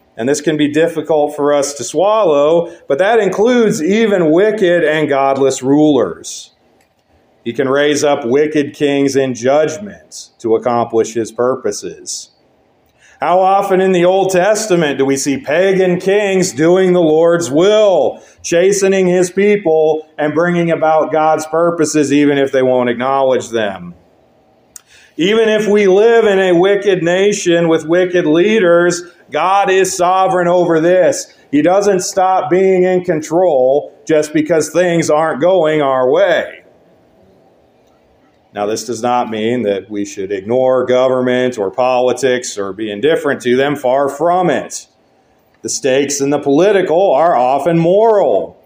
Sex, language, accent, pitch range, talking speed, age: male, English, American, 140-185 Hz, 140 wpm, 40-59